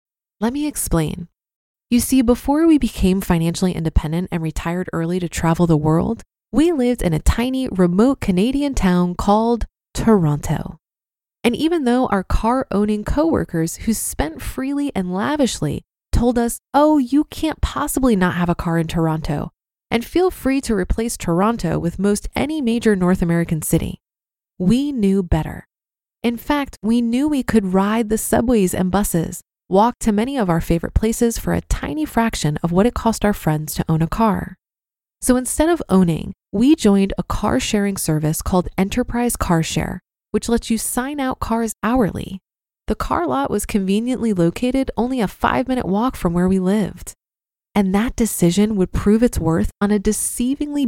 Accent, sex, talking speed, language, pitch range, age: American, female, 170 wpm, English, 180-245 Hz, 20-39